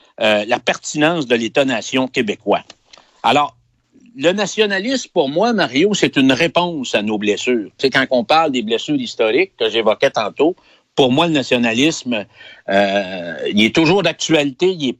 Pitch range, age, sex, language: 135-205 Hz, 60-79, male, French